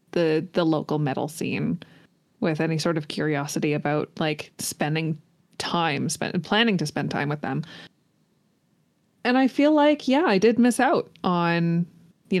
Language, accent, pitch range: English, American, 160-205 Hz